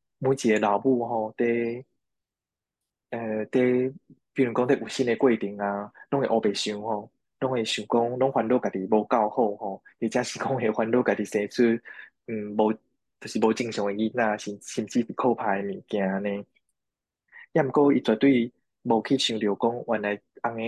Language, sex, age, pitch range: Chinese, male, 20-39, 105-125 Hz